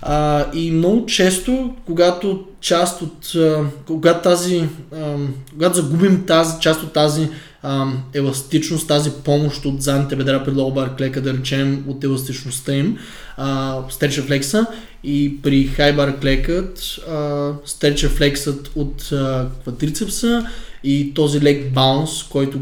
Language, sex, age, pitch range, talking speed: Bulgarian, male, 20-39, 135-160 Hz, 125 wpm